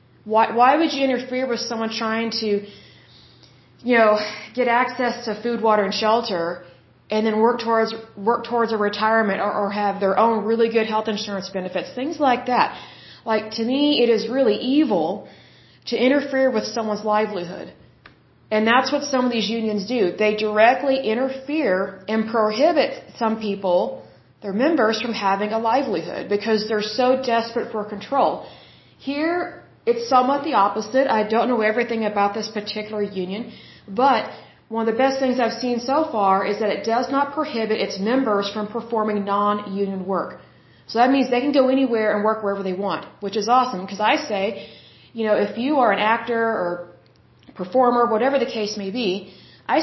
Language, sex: Bengali, female